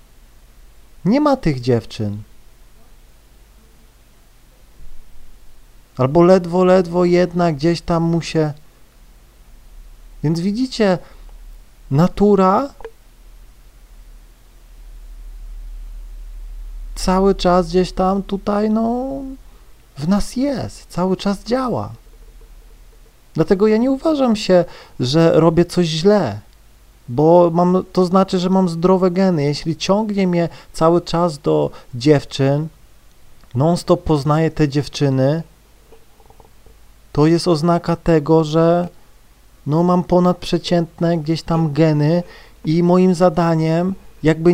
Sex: male